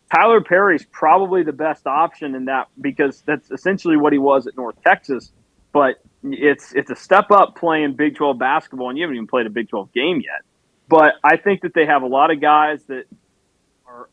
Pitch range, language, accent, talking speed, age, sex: 130-165 Hz, English, American, 210 wpm, 30-49, male